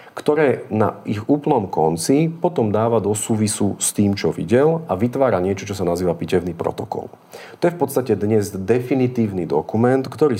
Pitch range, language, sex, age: 95-115 Hz, Slovak, male, 40-59